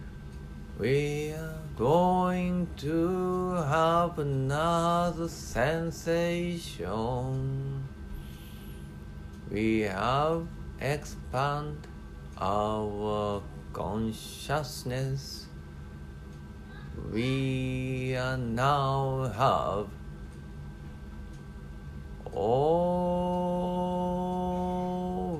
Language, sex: Japanese, male